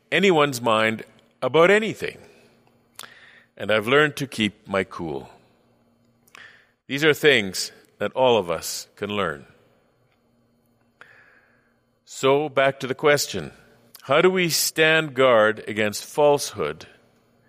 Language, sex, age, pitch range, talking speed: English, male, 50-69, 110-135 Hz, 110 wpm